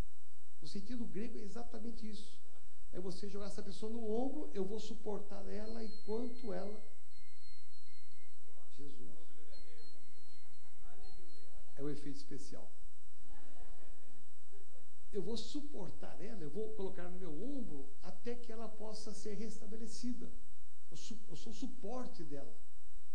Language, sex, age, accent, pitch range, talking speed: Portuguese, male, 60-79, Brazilian, 185-230 Hz, 120 wpm